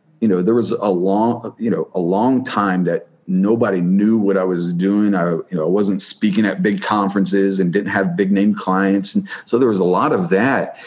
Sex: male